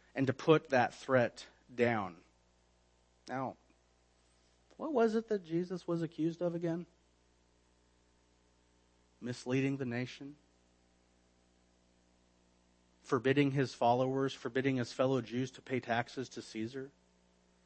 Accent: American